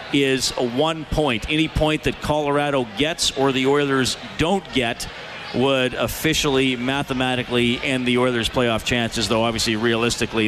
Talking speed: 135 wpm